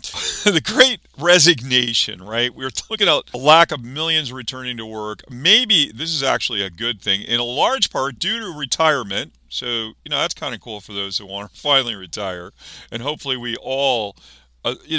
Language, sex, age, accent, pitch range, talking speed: English, male, 50-69, American, 110-160 Hz, 190 wpm